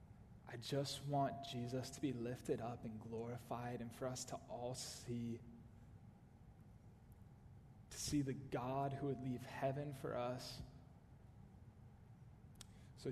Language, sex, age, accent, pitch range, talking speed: English, male, 20-39, American, 120-150 Hz, 125 wpm